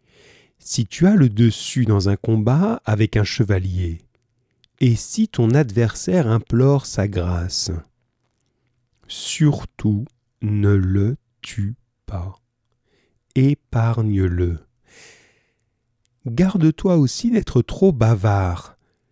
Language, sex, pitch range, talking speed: French, male, 105-125 Hz, 90 wpm